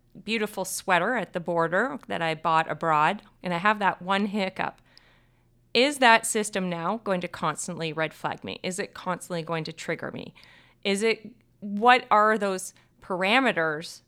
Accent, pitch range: American, 165-205 Hz